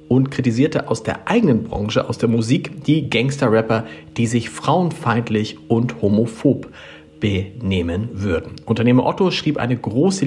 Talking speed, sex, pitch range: 135 wpm, male, 105-145 Hz